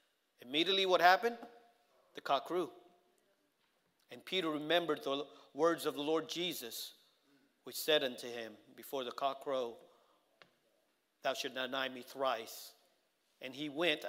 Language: English